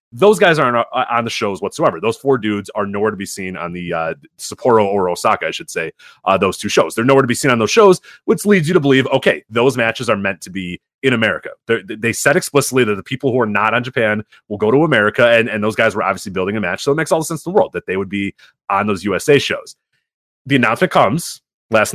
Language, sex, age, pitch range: English, male, 30-49, 105-140 Hz